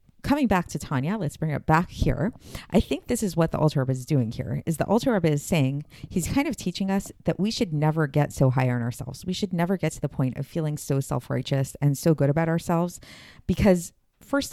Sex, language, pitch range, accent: female, English, 140-175 Hz, American